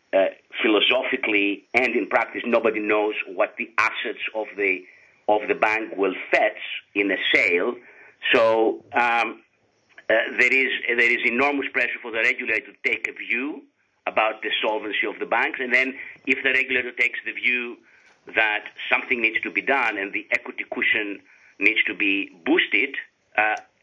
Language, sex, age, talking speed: English, male, 50-69, 165 wpm